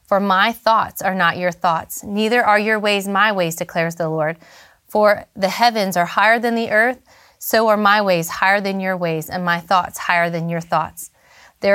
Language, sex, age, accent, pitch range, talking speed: English, female, 30-49, American, 170-210 Hz, 205 wpm